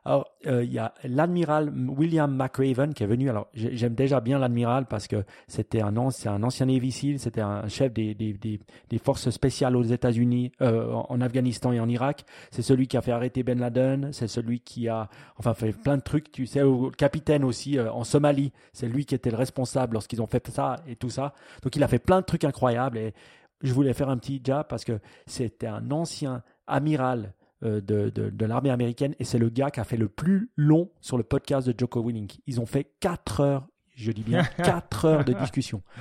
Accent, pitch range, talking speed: French, 115-140 Hz, 225 wpm